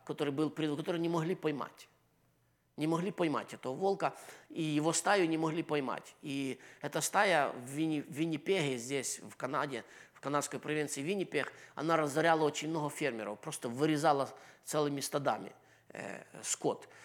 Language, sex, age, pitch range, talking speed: English, male, 20-39, 145-175 Hz, 145 wpm